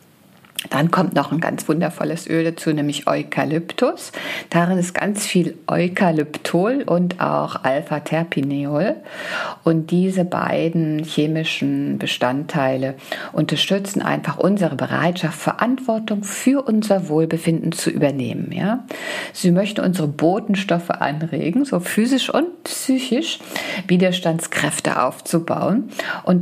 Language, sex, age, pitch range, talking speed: German, female, 50-69, 150-205 Hz, 100 wpm